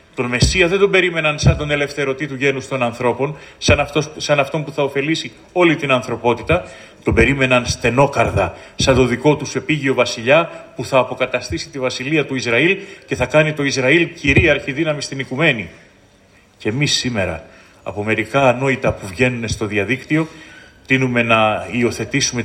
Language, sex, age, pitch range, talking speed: Greek, male, 30-49, 115-150 Hz, 160 wpm